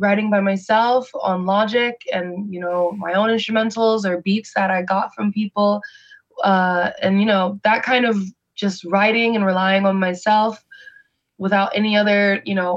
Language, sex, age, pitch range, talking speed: English, female, 20-39, 185-220 Hz, 170 wpm